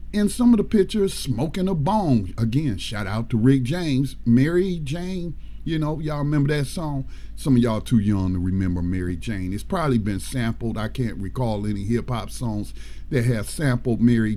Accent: American